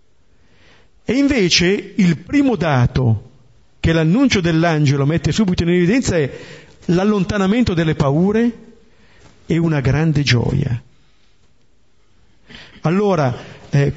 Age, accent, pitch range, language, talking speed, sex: 50-69, native, 130-200 Hz, Italian, 95 wpm, male